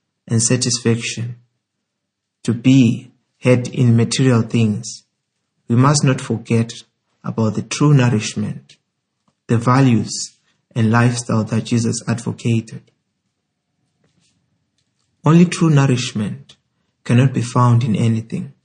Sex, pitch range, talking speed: male, 115-130 Hz, 100 wpm